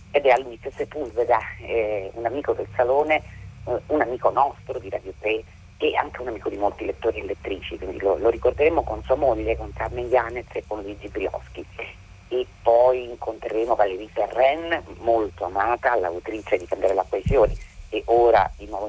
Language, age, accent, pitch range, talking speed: Italian, 40-59, native, 115-190 Hz, 170 wpm